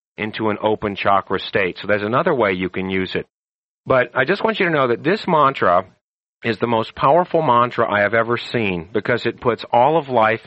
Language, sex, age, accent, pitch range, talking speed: English, male, 40-59, American, 115-150 Hz, 220 wpm